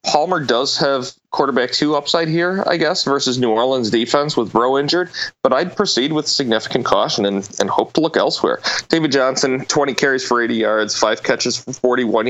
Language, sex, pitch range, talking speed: English, male, 125-150 Hz, 190 wpm